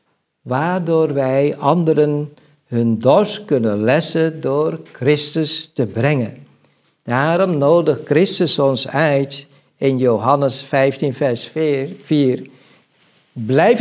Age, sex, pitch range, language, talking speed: 60-79, male, 135-180 Hz, Dutch, 95 wpm